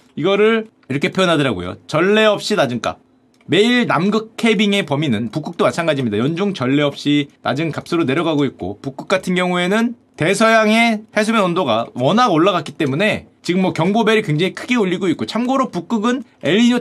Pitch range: 170-245 Hz